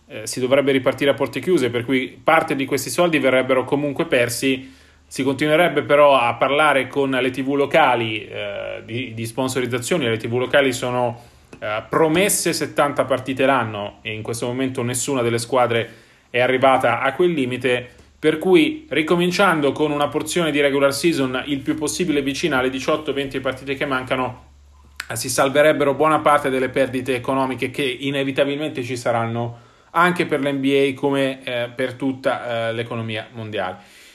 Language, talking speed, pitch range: Italian, 155 wpm, 125-145 Hz